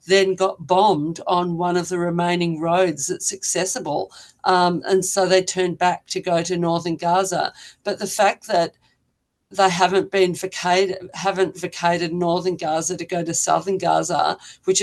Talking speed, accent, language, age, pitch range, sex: 160 wpm, Australian, English, 50-69, 175-200 Hz, female